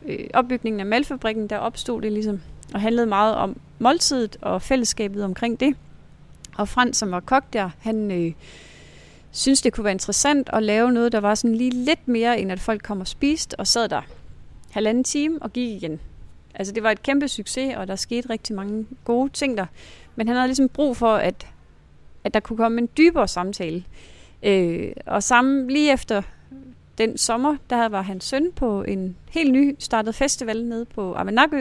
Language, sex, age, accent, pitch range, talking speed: Danish, female, 30-49, native, 205-255 Hz, 190 wpm